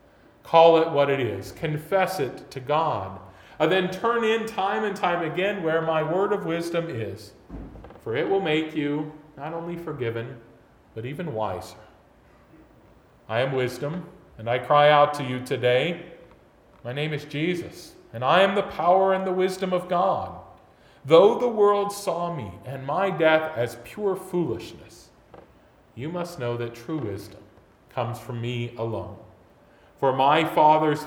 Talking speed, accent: 160 wpm, American